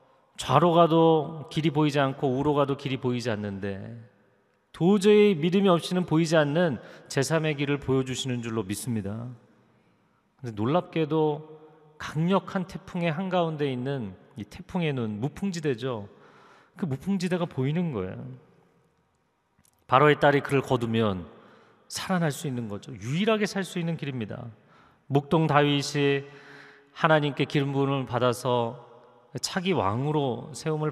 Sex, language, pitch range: male, Korean, 125-165 Hz